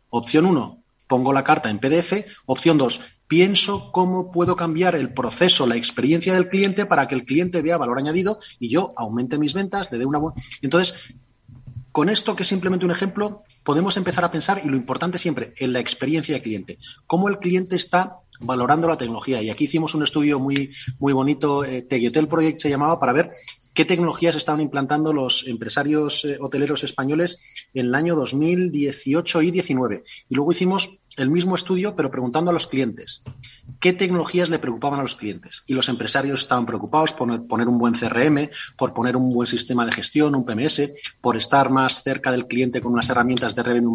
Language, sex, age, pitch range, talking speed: Spanish, male, 30-49, 125-175 Hz, 195 wpm